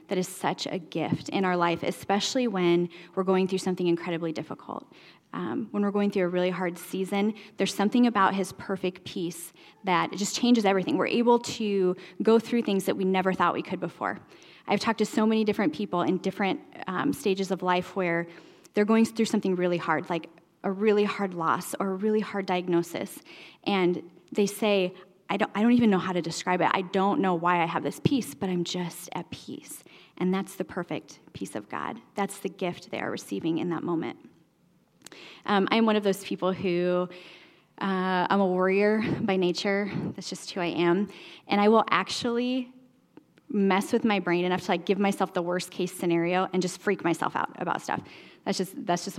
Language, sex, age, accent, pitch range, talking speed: English, female, 10-29, American, 180-205 Hz, 205 wpm